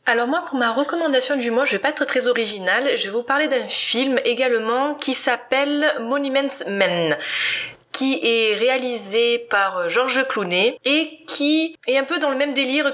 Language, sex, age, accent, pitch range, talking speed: French, female, 20-39, French, 195-265 Hz, 180 wpm